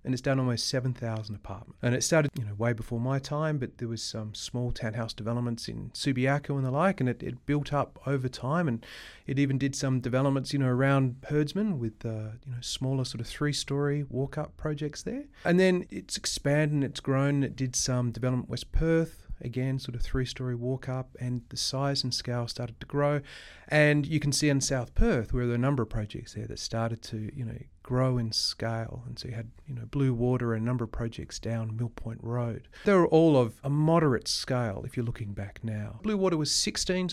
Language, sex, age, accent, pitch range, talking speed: English, male, 30-49, Australian, 115-140 Hz, 220 wpm